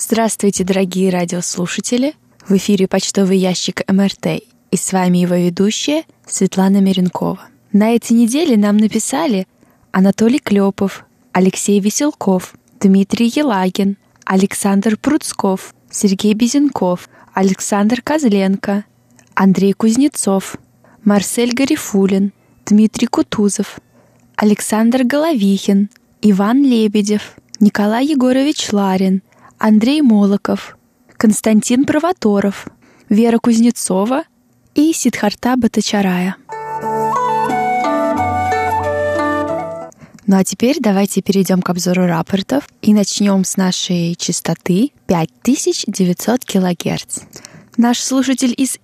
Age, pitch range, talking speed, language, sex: 20-39, 190-235 Hz, 90 wpm, Russian, female